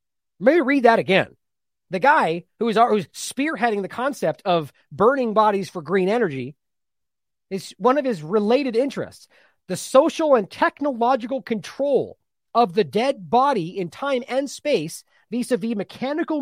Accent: American